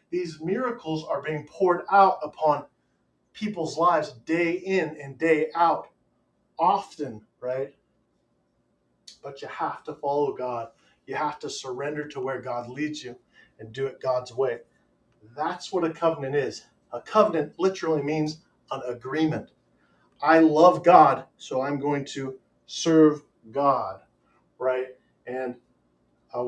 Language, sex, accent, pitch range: English, male, American, 125-165 Hz